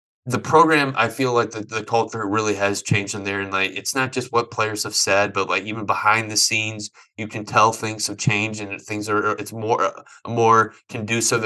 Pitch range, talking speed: 105-115 Hz, 220 wpm